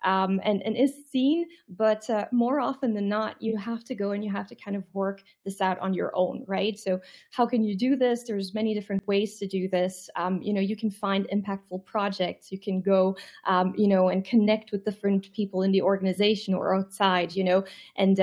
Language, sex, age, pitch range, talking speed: English, female, 20-39, 195-225 Hz, 225 wpm